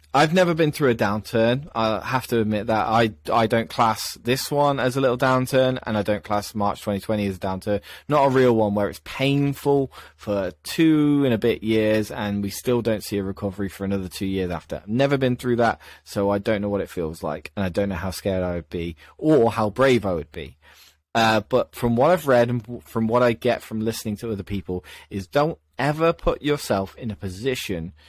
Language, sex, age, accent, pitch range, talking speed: English, male, 20-39, British, 100-125 Hz, 230 wpm